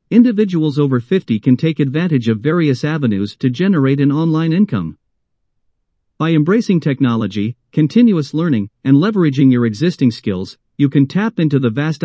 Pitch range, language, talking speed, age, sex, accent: 130-175 Hz, English, 150 wpm, 50-69, male, American